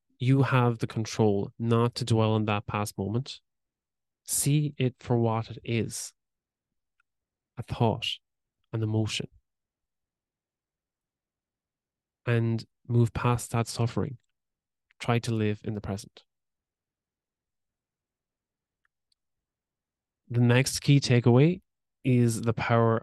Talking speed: 100 wpm